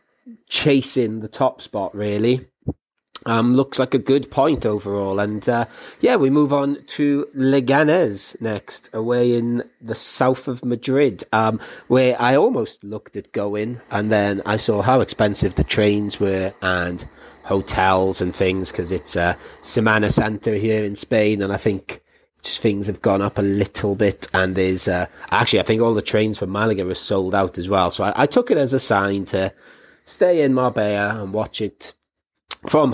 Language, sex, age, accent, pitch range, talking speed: English, male, 30-49, British, 95-115 Hz, 180 wpm